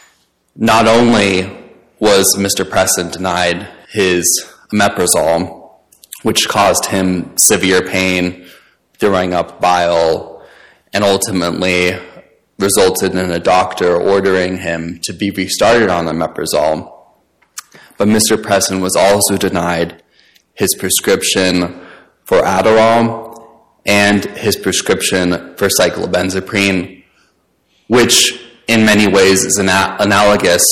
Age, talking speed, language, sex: 20-39, 100 wpm, English, male